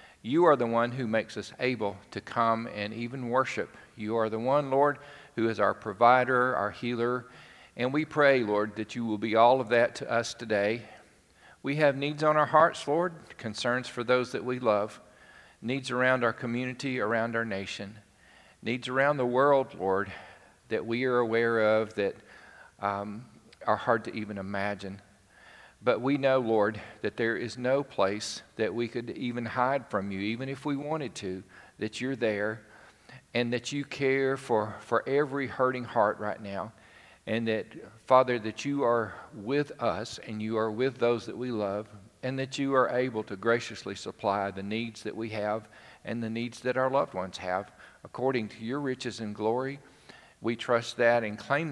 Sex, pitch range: male, 105-130 Hz